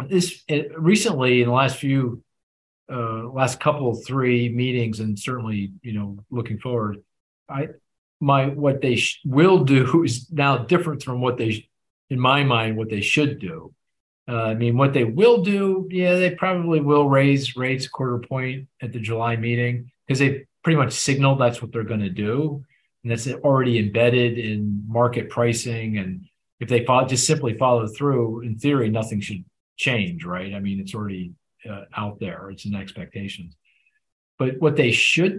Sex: male